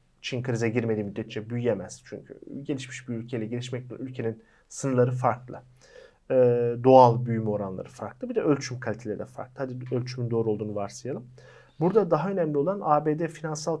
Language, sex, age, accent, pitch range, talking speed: Turkish, male, 40-59, native, 120-155 Hz, 150 wpm